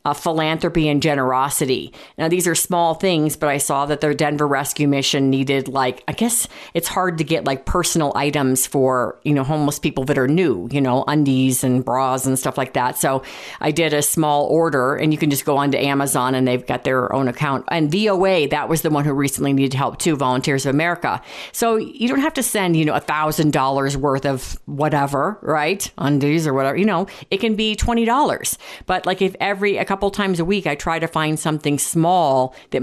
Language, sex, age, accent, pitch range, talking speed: English, female, 50-69, American, 135-165 Hz, 215 wpm